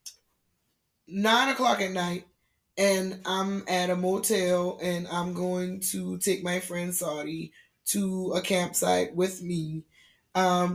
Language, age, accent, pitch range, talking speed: English, 20-39, American, 175-210 Hz, 130 wpm